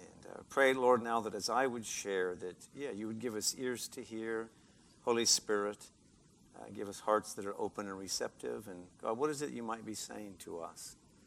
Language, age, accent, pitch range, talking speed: English, 50-69, American, 95-120 Hz, 215 wpm